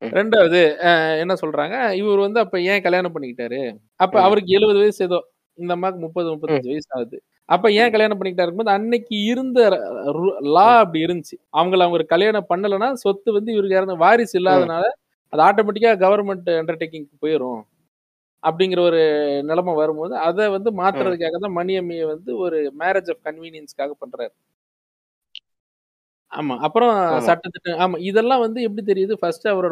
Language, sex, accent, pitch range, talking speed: Tamil, male, native, 155-200 Hz, 125 wpm